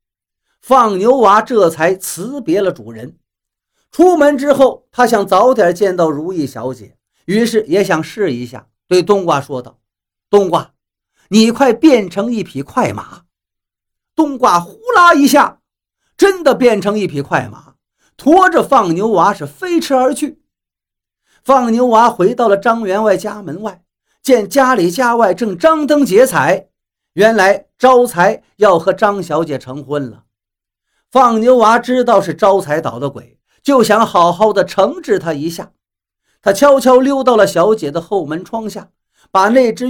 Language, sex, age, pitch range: Chinese, male, 50-69, 155-250 Hz